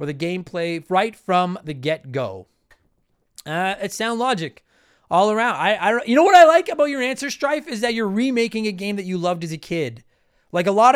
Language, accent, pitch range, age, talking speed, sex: English, American, 155-215 Hz, 30-49, 215 wpm, male